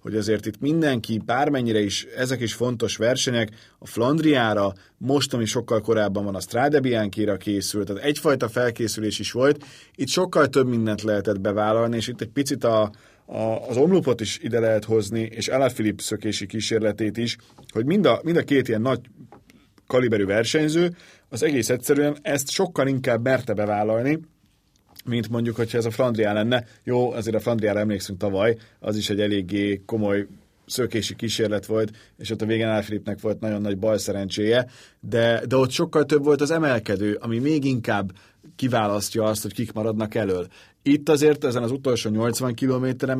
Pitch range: 105-130 Hz